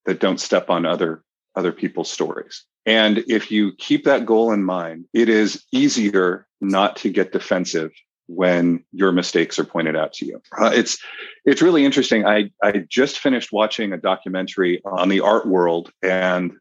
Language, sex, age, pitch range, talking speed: English, male, 40-59, 90-110 Hz, 175 wpm